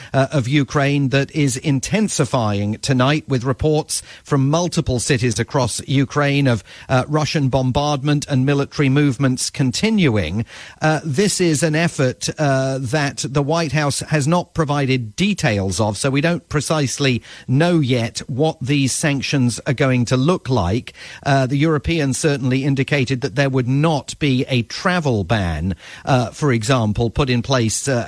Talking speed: 150 wpm